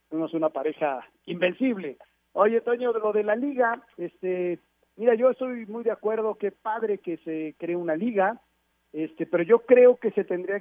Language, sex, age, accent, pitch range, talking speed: Spanish, male, 50-69, Mexican, 175-230 Hz, 175 wpm